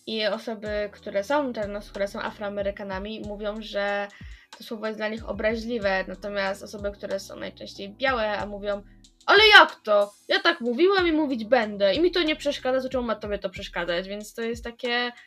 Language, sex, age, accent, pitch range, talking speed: Polish, female, 10-29, native, 200-240 Hz, 185 wpm